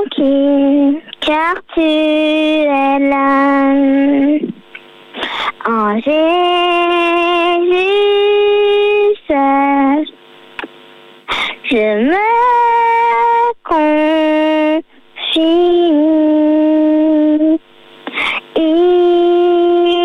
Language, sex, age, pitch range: French, male, 20-39, 310-415 Hz